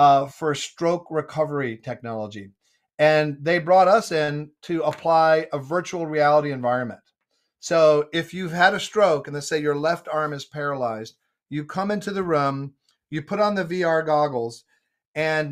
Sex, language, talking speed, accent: male, English, 160 wpm, American